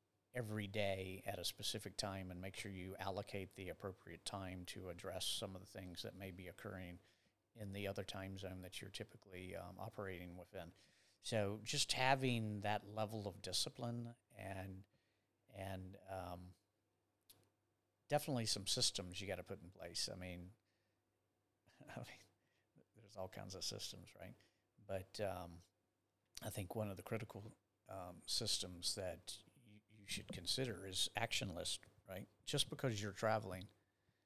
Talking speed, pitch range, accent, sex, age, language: 145 wpm, 95-110 Hz, American, male, 50-69, English